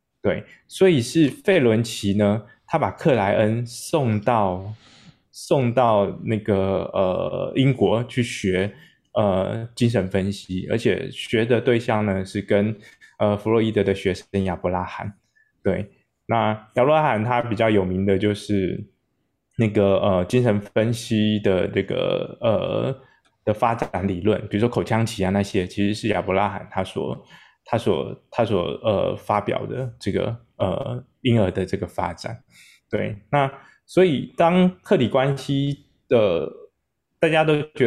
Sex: male